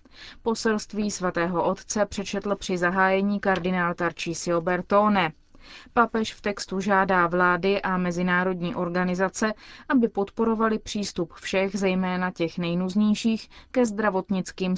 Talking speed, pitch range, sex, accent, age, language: 105 wpm, 180-220 Hz, female, native, 20-39, Czech